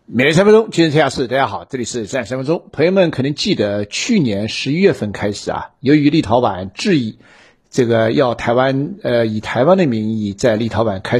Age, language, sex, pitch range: 50-69, Chinese, male, 105-130 Hz